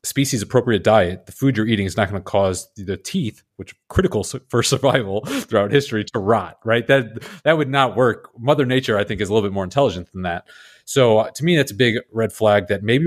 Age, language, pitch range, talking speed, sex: 30-49, English, 95-115 Hz, 235 wpm, male